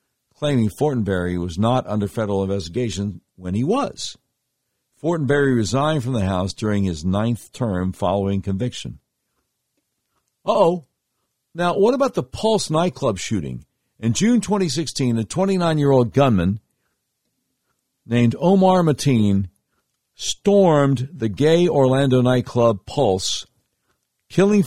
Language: English